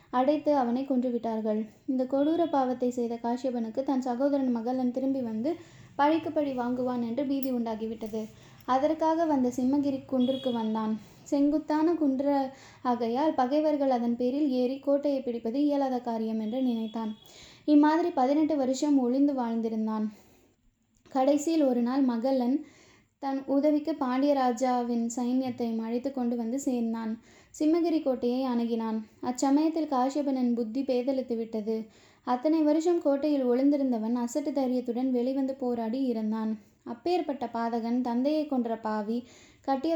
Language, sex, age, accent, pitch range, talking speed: Tamil, female, 20-39, native, 235-280 Hz, 110 wpm